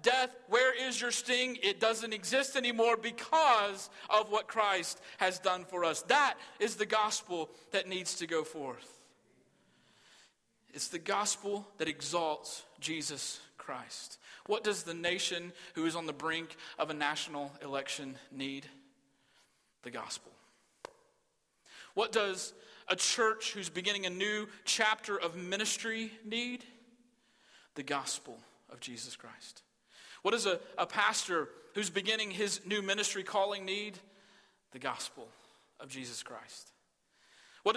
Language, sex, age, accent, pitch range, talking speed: English, male, 40-59, American, 160-210 Hz, 135 wpm